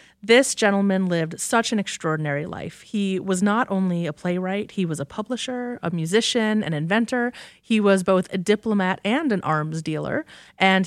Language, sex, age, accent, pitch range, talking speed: English, female, 30-49, American, 170-220 Hz, 170 wpm